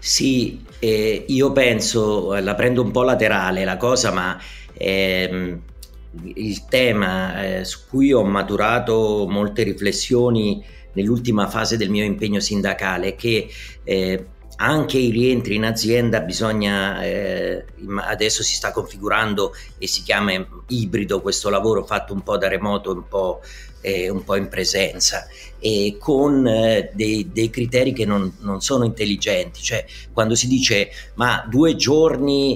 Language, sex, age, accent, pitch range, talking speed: Italian, male, 40-59, native, 100-125 Hz, 140 wpm